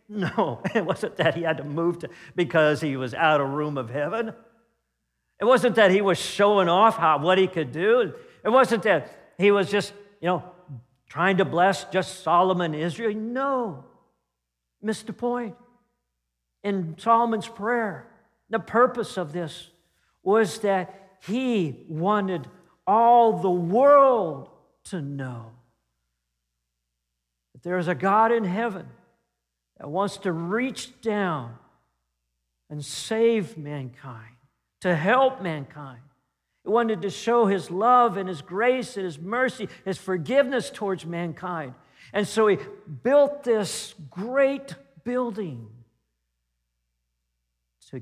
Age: 50-69